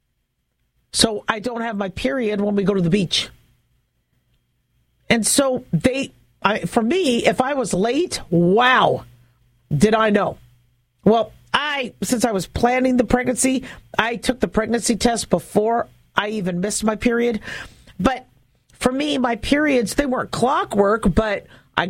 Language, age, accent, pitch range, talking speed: English, 50-69, American, 190-245 Hz, 150 wpm